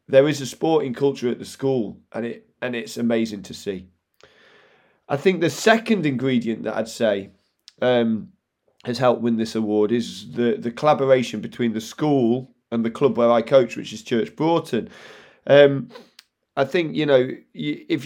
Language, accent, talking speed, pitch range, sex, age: English, British, 175 wpm, 115-140 Hz, male, 30-49